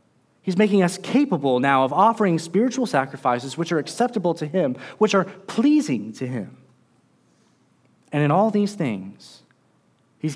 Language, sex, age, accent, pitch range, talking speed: English, male, 30-49, American, 125-170 Hz, 145 wpm